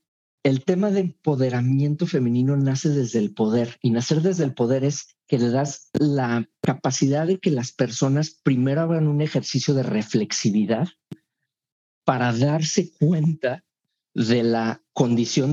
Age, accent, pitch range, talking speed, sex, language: 50-69, Mexican, 125-165 Hz, 140 wpm, male, Spanish